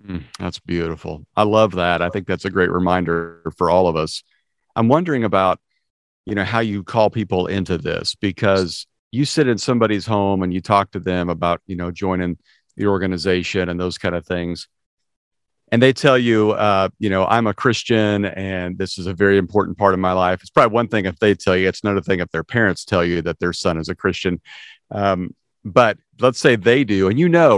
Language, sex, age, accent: English, male, 40-59, American